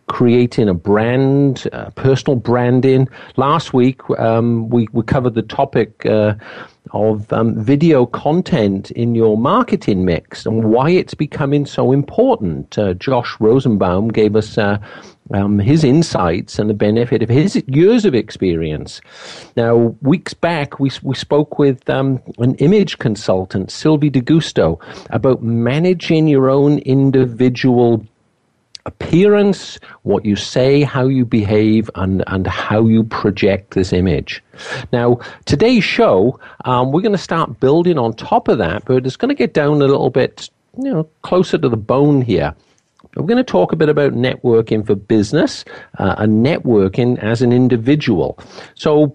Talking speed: 150 wpm